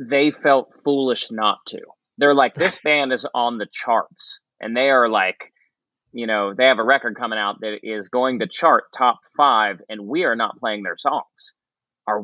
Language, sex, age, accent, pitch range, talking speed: English, male, 30-49, American, 105-135 Hz, 195 wpm